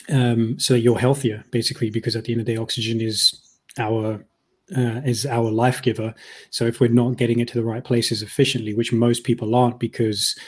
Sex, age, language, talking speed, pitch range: male, 20-39, English, 205 wpm, 115-125 Hz